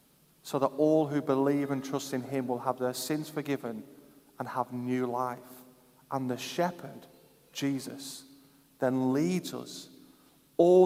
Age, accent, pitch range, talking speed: 30-49, British, 125-155 Hz, 145 wpm